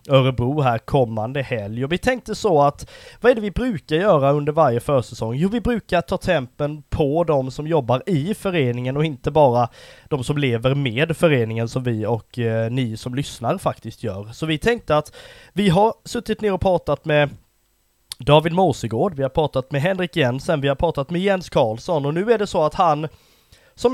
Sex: male